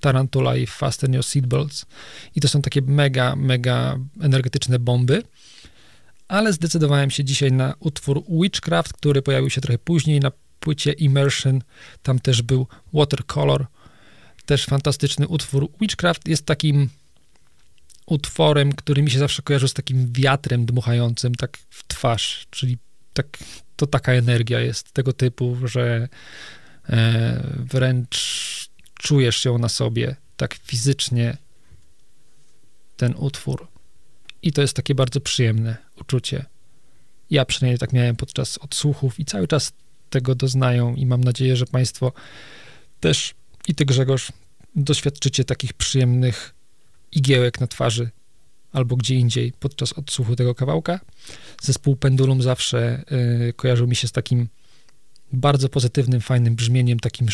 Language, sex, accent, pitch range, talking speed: Polish, male, native, 125-140 Hz, 130 wpm